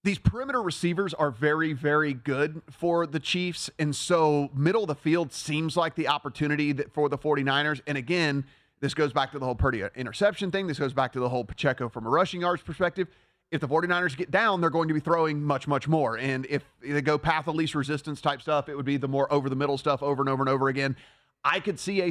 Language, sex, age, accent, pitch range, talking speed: English, male, 30-49, American, 140-165 Hz, 240 wpm